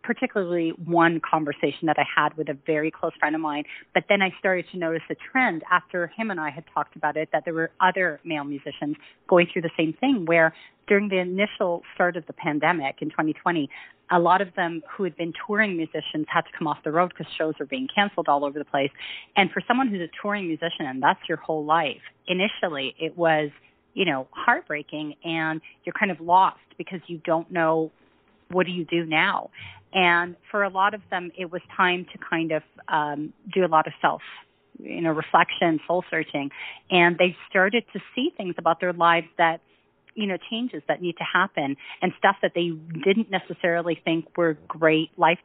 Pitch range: 160-190 Hz